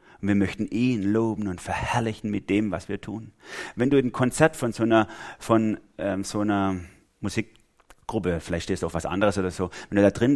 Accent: German